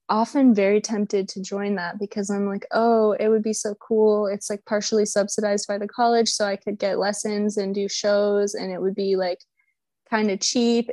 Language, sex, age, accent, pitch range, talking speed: English, female, 20-39, American, 190-215 Hz, 210 wpm